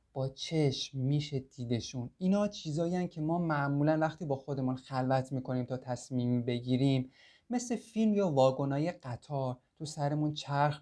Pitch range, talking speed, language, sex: 130-170 Hz, 145 wpm, Persian, male